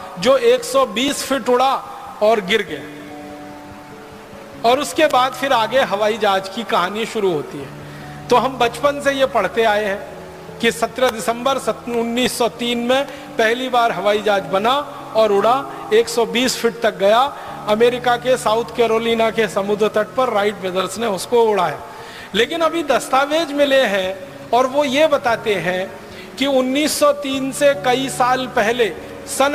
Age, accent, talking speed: 40-59, native, 150 wpm